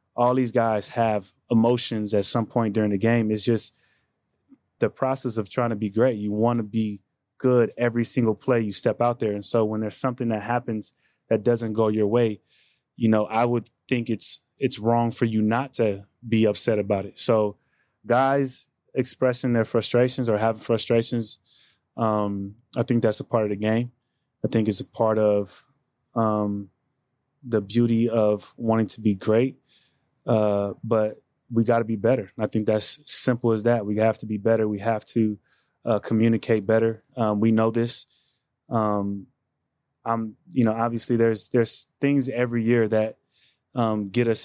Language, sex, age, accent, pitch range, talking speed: English, male, 20-39, American, 105-120 Hz, 180 wpm